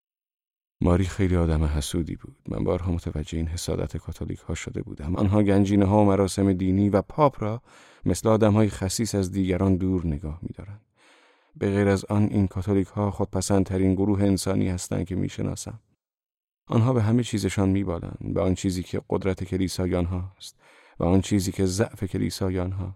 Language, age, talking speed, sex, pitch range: Persian, 30-49, 160 wpm, male, 95-105 Hz